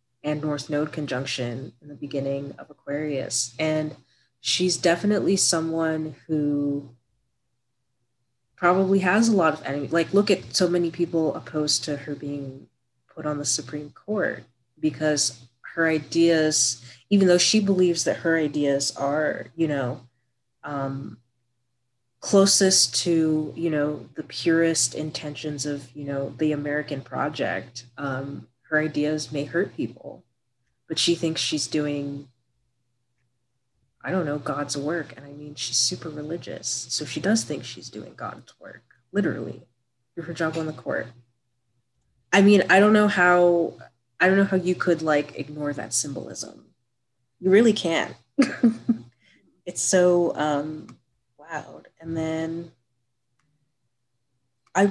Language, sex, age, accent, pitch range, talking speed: English, female, 30-49, American, 125-165 Hz, 130 wpm